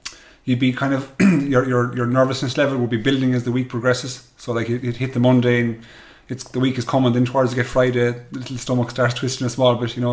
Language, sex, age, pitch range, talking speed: English, male, 30-49, 120-140 Hz, 260 wpm